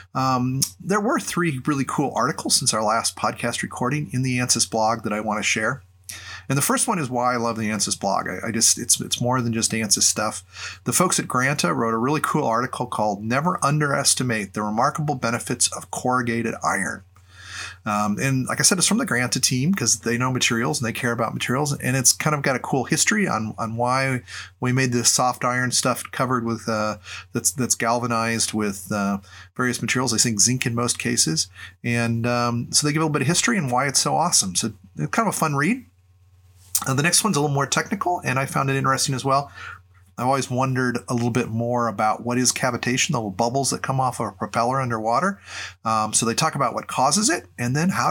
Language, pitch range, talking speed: English, 110-135 Hz, 225 wpm